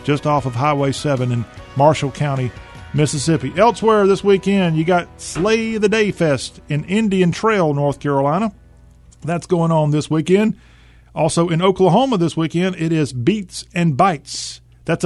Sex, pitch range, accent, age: male, 135-185 Hz, American, 40-59